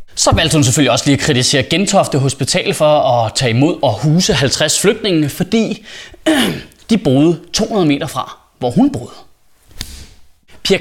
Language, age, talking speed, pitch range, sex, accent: Danish, 30-49, 155 wpm, 140-210 Hz, male, native